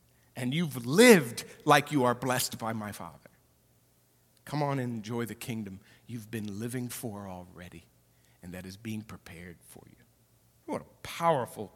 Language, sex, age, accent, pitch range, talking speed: English, male, 50-69, American, 110-140 Hz, 160 wpm